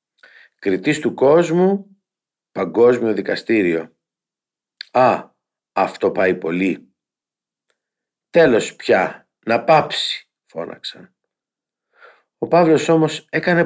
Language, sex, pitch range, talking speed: Greek, male, 105-155 Hz, 80 wpm